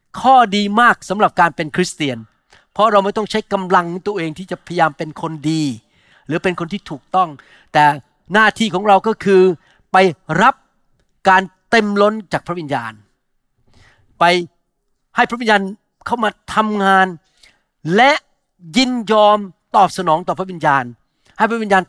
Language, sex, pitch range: Thai, male, 155-205 Hz